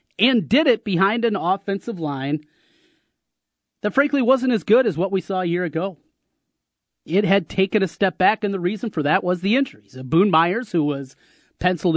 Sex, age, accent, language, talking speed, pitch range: male, 30-49, American, English, 190 wpm, 155-195 Hz